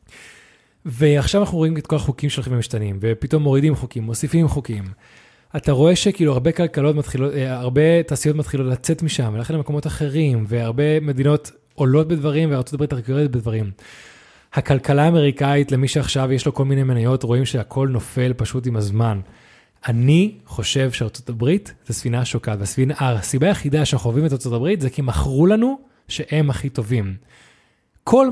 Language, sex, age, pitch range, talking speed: Hebrew, male, 20-39, 125-160 Hz, 145 wpm